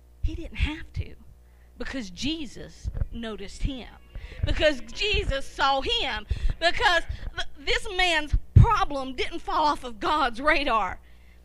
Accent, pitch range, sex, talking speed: American, 195-315 Hz, female, 115 wpm